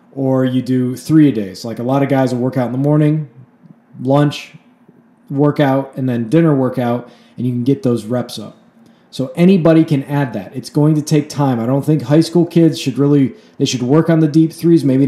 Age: 20-39